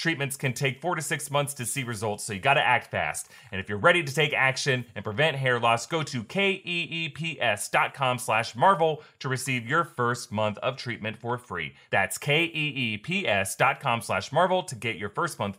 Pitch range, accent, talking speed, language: 120-170 Hz, American, 190 wpm, English